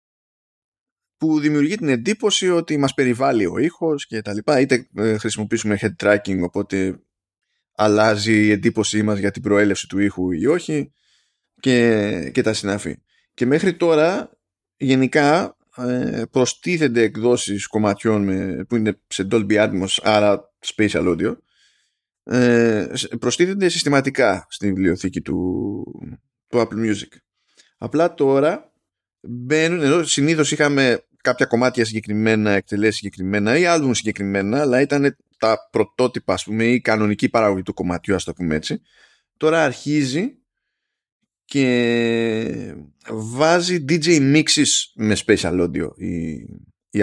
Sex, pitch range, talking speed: male, 105-135 Hz, 130 wpm